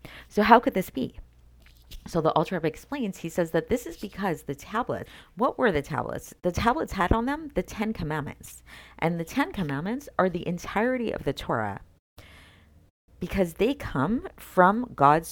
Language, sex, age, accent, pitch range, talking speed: English, female, 40-59, American, 130-180 Hz, 170 wpm